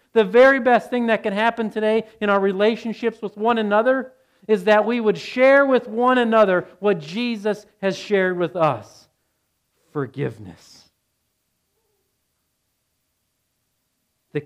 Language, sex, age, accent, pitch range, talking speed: English, male, 40-59, American, 120-190 Hz, 125 wpm